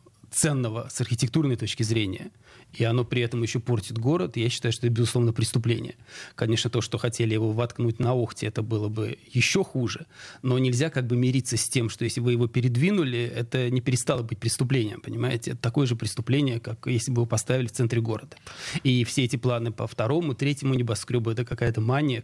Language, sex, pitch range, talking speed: Russian, male, 115-130 Hz, 195 wpm